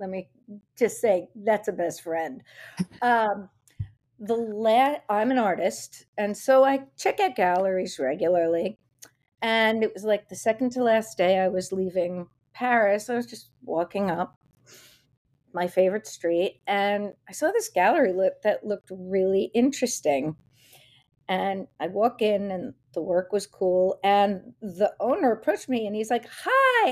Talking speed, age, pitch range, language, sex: 155 wpm, 40-59, 185-245 Hz, English, female